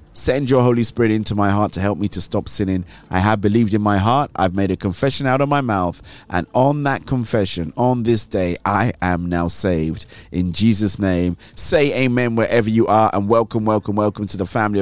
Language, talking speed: English, 215 wpm